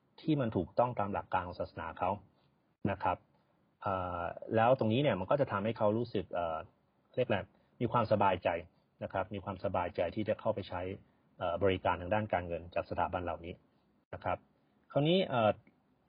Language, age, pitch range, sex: Thai, 30-49, 95-120 Hz, male